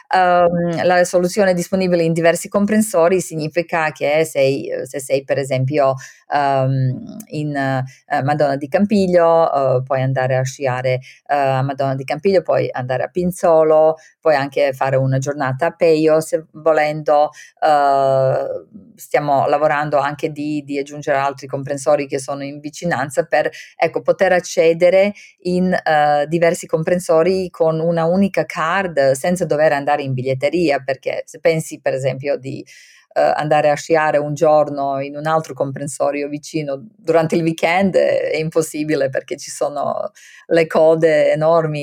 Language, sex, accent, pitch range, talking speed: Italian, female, native, 140-175 Hz, 130 wpm